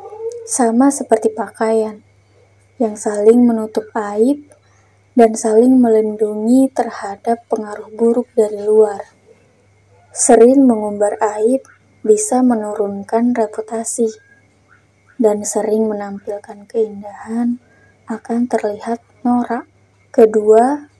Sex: female